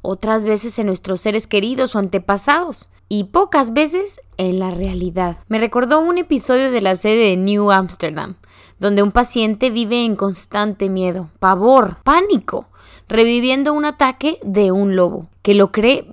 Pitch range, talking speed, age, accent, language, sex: 195-265 Hz, 155 wpm, 20-39, Mexican, Spanish, female